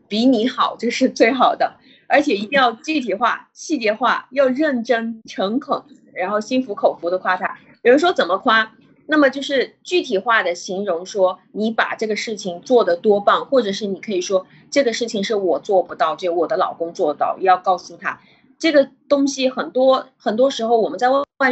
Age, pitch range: 30-49, 190-260 Hz